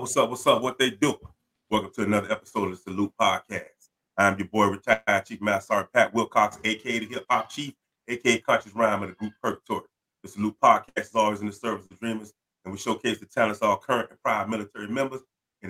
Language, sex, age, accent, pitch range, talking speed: English, male, 30-49, American, 100-120 Hz, 220 wpm